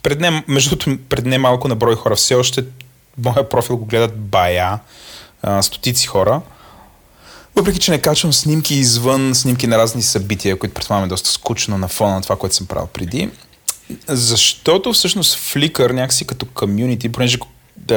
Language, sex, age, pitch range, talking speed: Bulgarian, male, 30-49, 100-135 Hz, 160 wpm